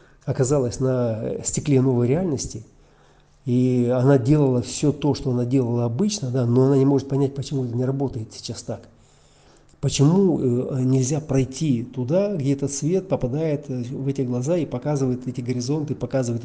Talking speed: 150 wpm